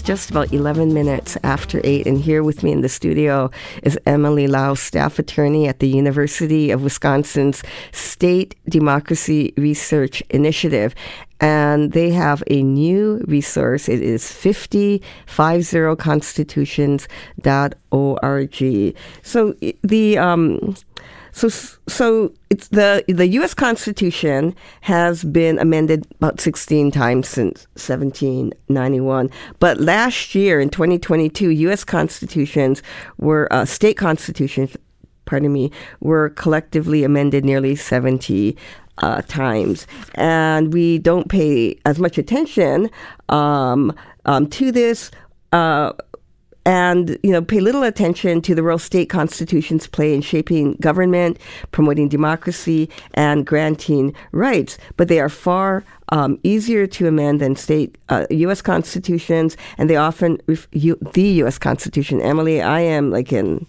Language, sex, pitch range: English, female, 140-175 Hz